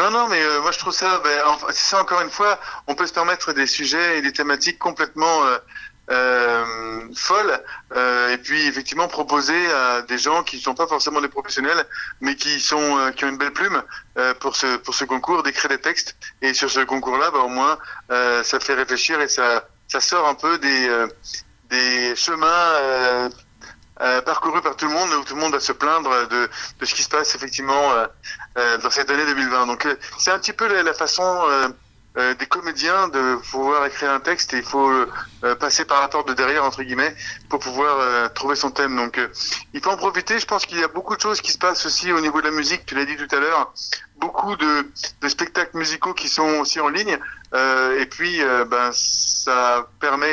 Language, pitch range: French, 125-165 Hz